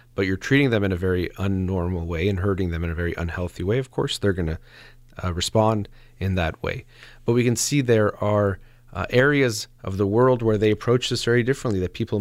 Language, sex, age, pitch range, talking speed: English, male, 30-49, 90-120 Hz, 225 wpm